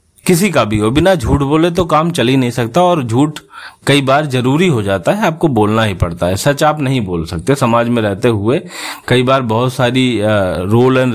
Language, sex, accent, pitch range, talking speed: Hindi, male, native, 105-145 Hz, 220 wpm